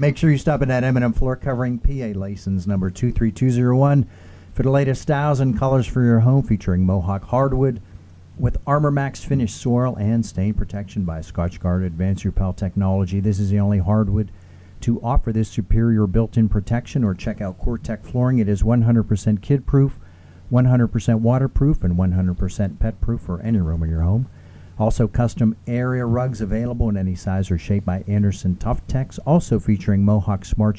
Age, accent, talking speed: 50-69, American, 170 wpm